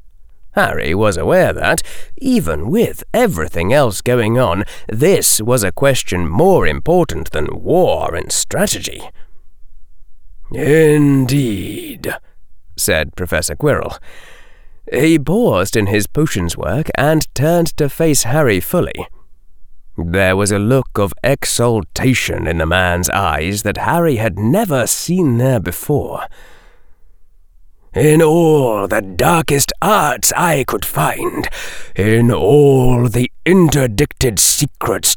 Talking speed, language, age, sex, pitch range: 115 wpm, English, 30-49, male, 95-150 Hz